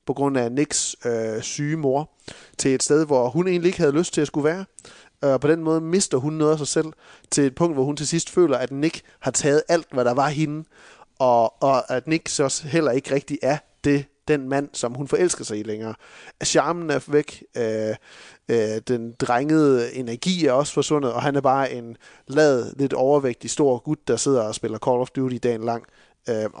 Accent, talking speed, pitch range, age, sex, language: native, 215 wpm, 115-150 Hz, 30-49, male, Danish